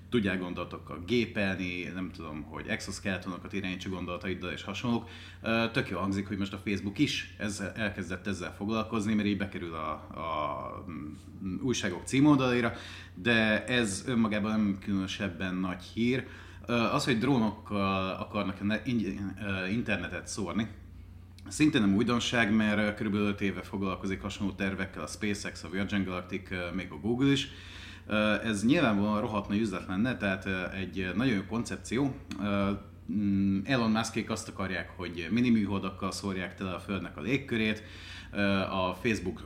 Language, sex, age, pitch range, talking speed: Hungarian, male, 30-49, 90-105 Hz, 130 wpm